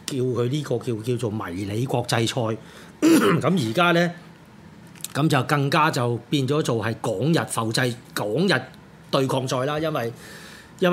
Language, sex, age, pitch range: Chinese, male, 30-49, 125-165 Hz